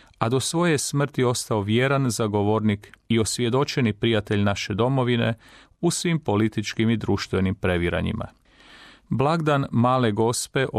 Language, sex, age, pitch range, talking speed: Croatian, male, 40-59, 105-125 Hz, 115 wpm